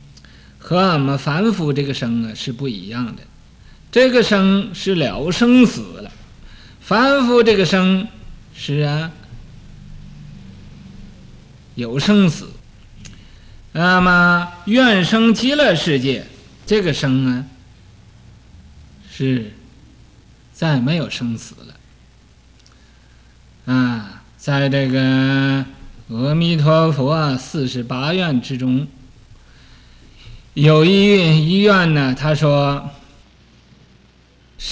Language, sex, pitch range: Chinese, male, 110-165 Hz